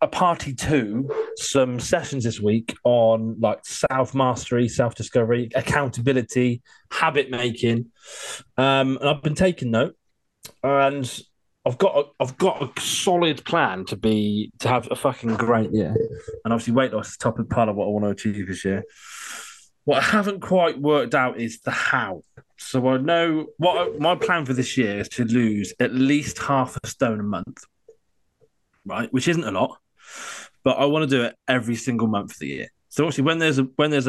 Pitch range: 115-145 Hz